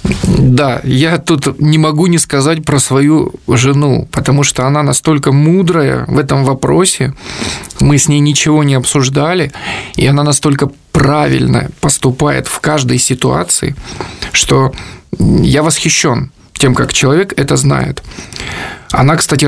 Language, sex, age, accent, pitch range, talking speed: Russian, male, 20-39, native, 135-160 Hz, 130 wpm